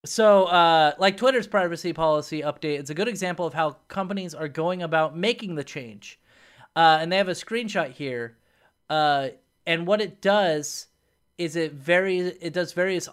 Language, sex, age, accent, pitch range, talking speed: English, male, 30-49, American, 150-185 Hz, 175 wpm